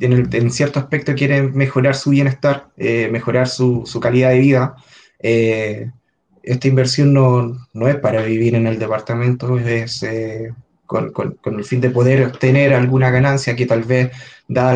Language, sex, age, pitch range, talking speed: Spanish, male, 20-39, 115-135 Hz, 175 wpm